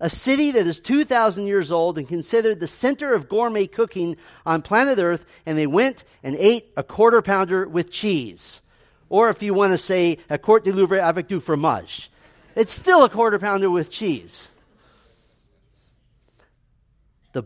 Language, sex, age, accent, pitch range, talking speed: English, male, 50-69, American, 125-185 Hz, 165 wpm